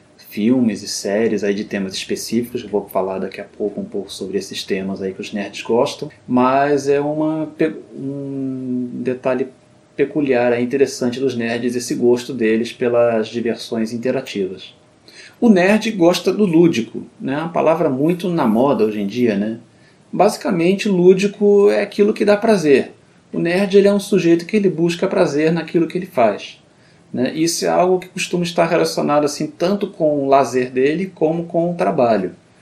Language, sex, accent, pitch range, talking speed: English, male, Brazilian, 120-170 Hz, 160 wpm